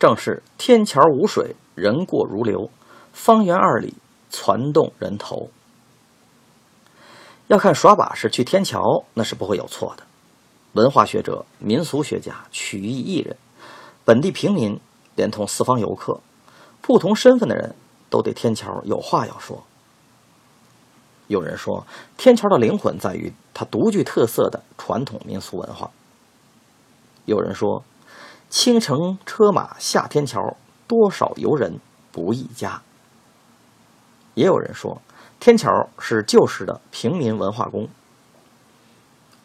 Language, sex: Chinese, male